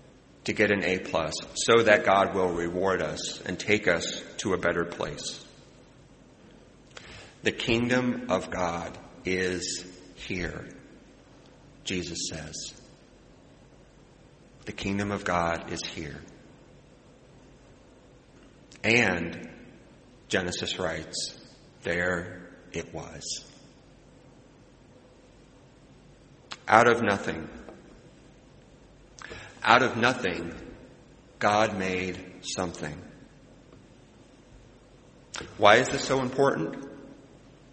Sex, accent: male, American